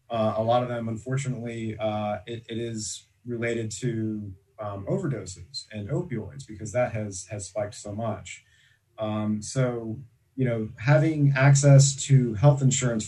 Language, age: English, 30-49